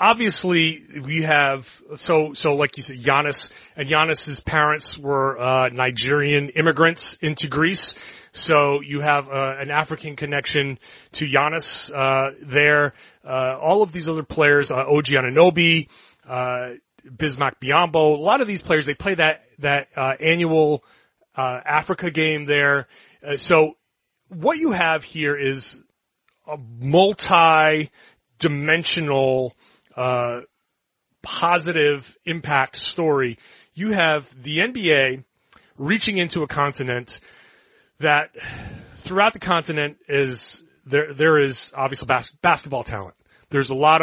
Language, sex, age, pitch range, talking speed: English, male, 30-49, 135-160 Hz, 125 wpm